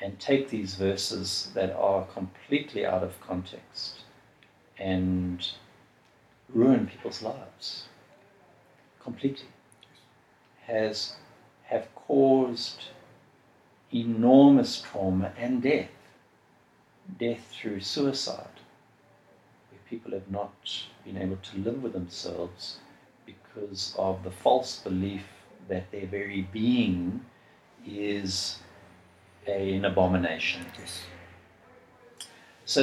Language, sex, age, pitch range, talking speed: English, male, 60-79, 95-125 Hz, 90 wpm